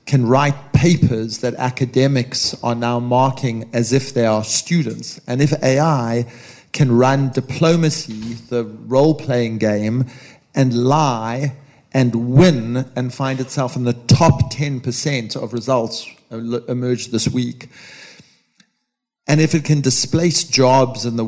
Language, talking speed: English, 130 wpm